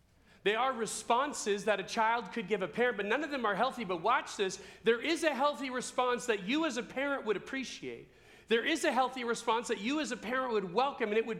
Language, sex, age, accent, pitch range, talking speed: English, male, 40-59, American, 145-235 Hz, 240 wpm